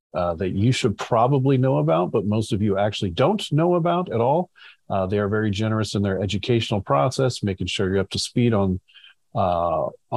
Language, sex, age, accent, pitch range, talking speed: English, male, 40-59, American, 100-130 Hz, 200 wpm